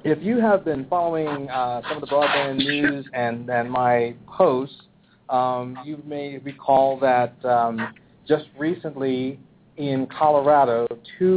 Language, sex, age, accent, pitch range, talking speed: English, male, 40-59, American, 120-150 Hz, 135 wpm